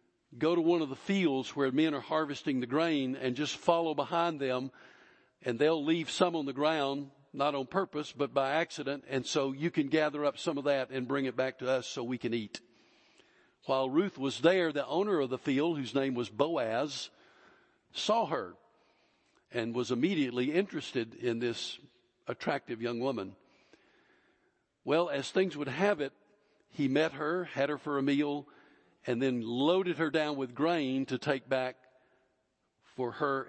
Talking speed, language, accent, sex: 175 wpm, English, American, male